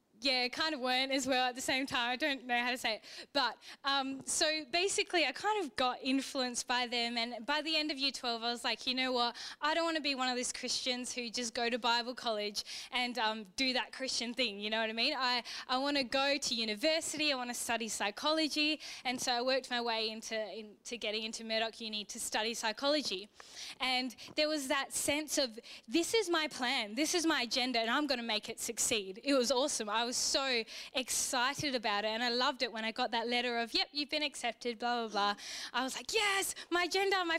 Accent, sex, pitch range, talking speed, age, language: Australian, female, 235-295 Hz, 235 wpm, 10-29, English